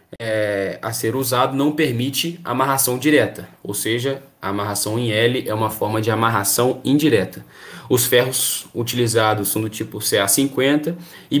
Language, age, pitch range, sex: Portuguese, 20-39, 115-140 Hz, male